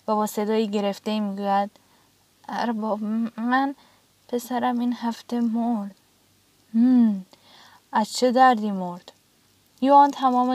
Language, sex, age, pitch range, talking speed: Persian, female, 10-29, 205-260 Hz, 95 wpm